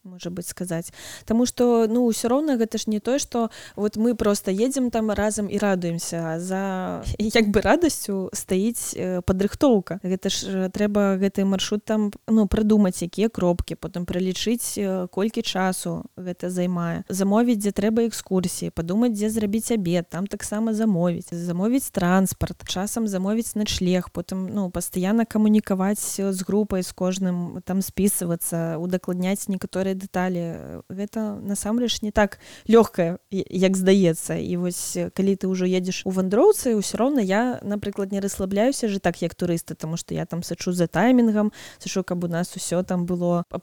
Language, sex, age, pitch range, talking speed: Russian, female, 20-39, 180-215 Hz, 160 wpm